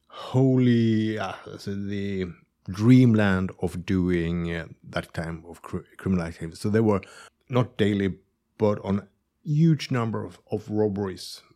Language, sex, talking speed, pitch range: Danish, male, 135 wpm, 95-115 Hz